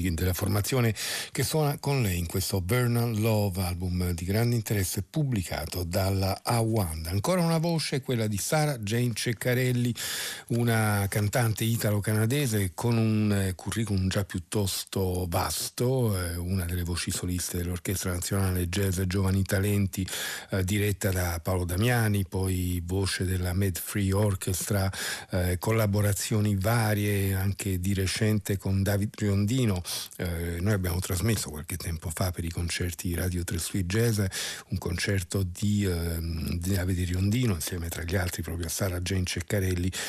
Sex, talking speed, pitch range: male, 135 wpm, 90-110 Hz